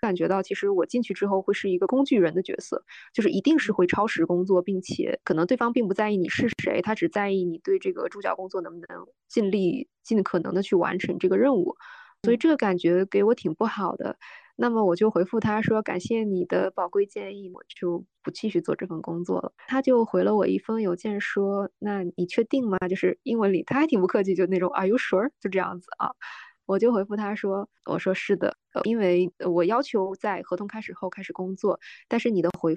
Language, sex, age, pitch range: Chinese, female, 10-29, 180-230 Hz